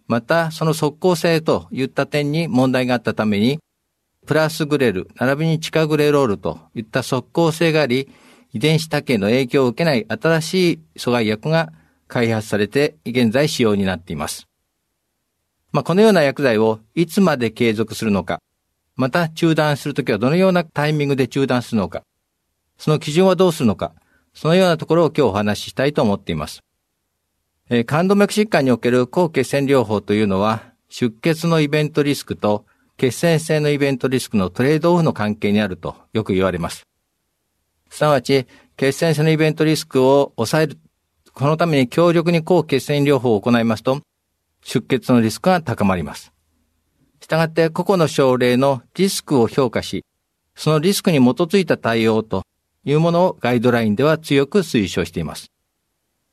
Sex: male